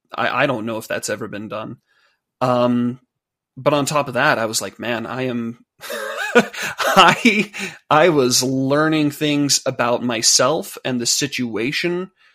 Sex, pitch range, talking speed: male, 120-145 Hz, 150 wpm